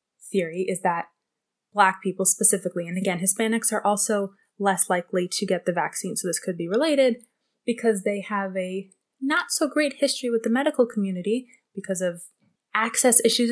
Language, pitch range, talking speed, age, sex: English, 185-235 Hz, 170 wpm, 20-39, female